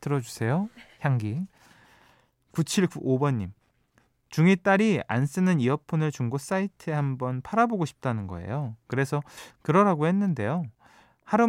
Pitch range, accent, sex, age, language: 115-165 Hz, native, male, 20-39, Korean